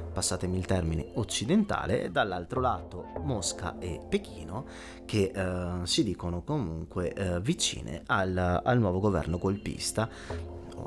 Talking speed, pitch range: 125 wpm, 90-110 Hz